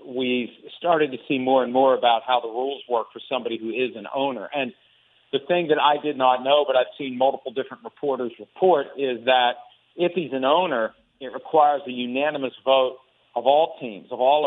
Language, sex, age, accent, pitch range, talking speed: English, male, 50-69, American, 130-160 Hz, 205 wpm